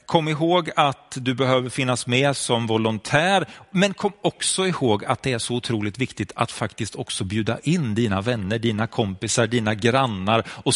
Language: Swedish